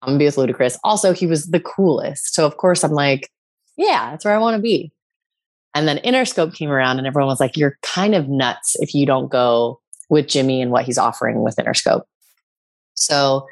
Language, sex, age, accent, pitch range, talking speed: English, female, 20-39, American, 135-180 Hz, 215 wpm